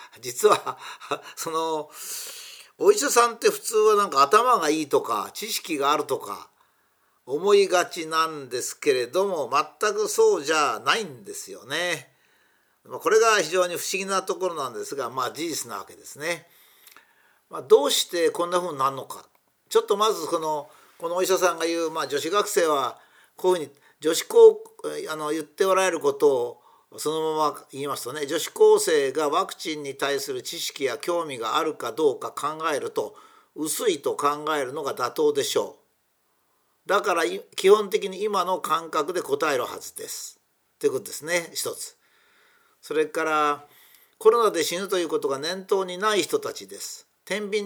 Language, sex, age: Japanese, male, 50-69